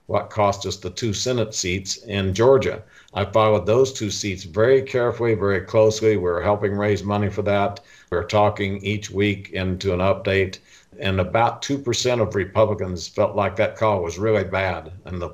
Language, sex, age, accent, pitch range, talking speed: English, male, 50-69, American, 90-105 Hz, 175 wpm